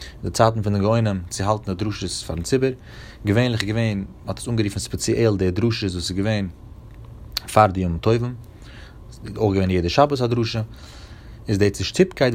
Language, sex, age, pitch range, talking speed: Hebrew, male, 30-49, 95-120 Hz, 120 wpm